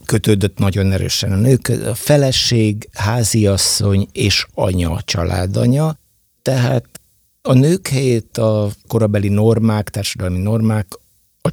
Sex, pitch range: male, 95-115 Hz